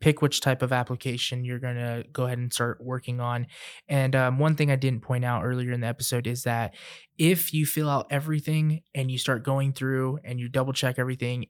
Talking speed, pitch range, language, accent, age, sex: 225 wpm, 120-135 Hz, English, American, 20-39, male